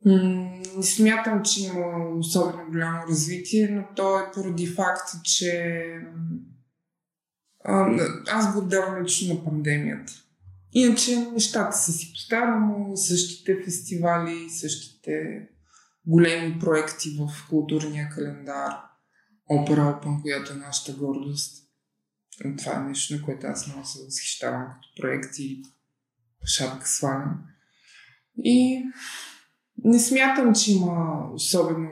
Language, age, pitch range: Bulgarian, 20-39, 150-185 Hz